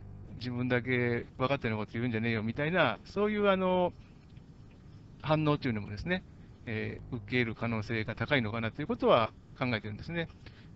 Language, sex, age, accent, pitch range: Japanese, male, 60-79, native, 110-150 Hz